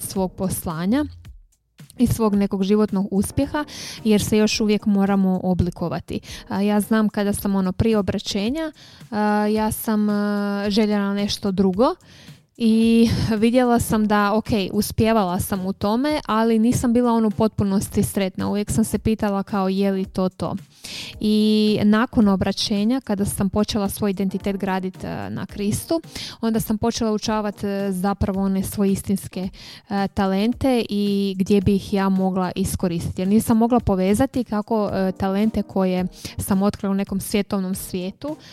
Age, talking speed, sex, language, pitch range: 20-39, 140 wpm, female, Croatian, 195-215 Hz